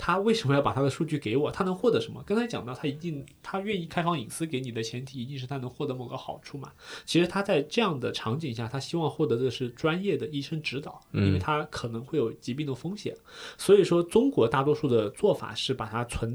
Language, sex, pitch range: Chinese, male, 120-175 Hz